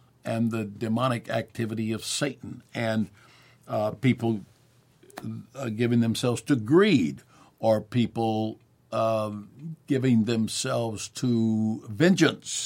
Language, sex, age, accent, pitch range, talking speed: English, male, 60-79, American, 105-125 Hz, 100 wpm